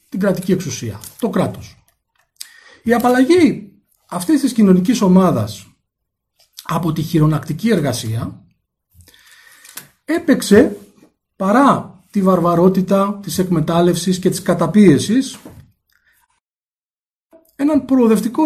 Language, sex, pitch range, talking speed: Greek, male, 145-235 Hz, 85 wpm